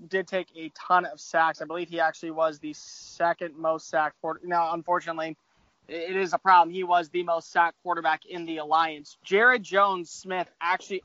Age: 20-39